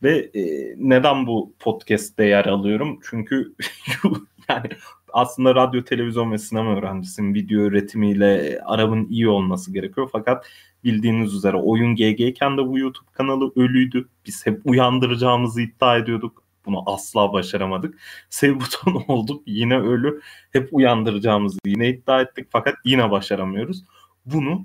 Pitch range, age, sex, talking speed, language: 110-155 Hz, 30-49, male, 125 wpm, Turkish